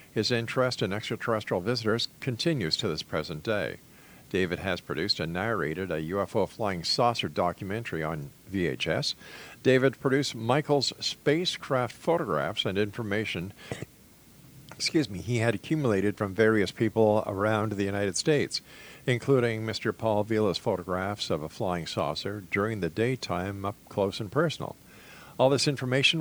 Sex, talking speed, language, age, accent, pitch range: male, 135 wpm, English, 50-69, American, 100-135 Hz